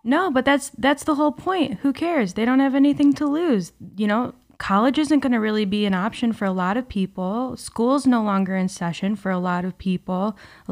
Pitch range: 190-230 Hz